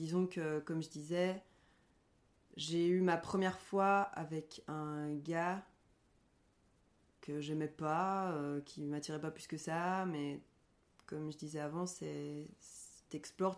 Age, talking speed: 20-39, 135 wpm